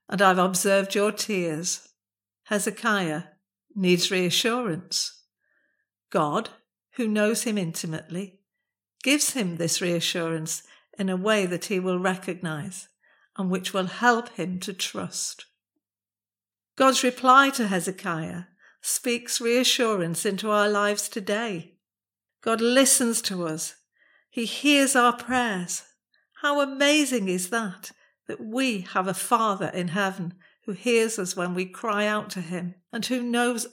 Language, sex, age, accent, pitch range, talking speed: English, female, 50-69, British, 180-230 Hz, 130 wpm